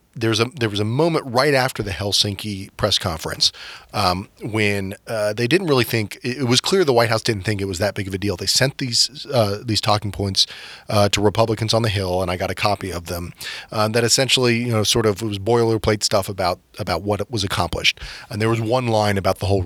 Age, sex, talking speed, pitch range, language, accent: 30-49, male, 245 wpm, 100-120 Hz, English, American